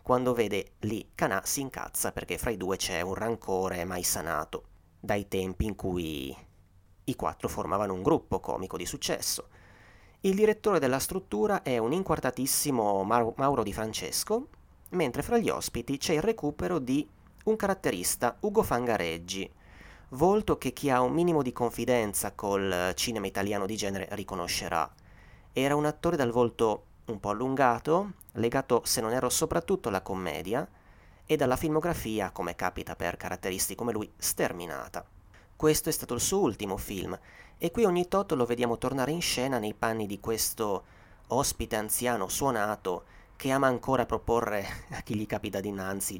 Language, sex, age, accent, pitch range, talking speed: Italian, male, 30-49, native, 95-135 Hz, 155 wpm